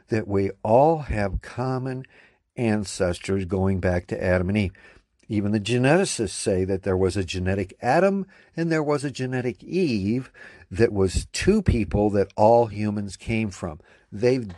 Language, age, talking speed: English, 60-79, 155 wpm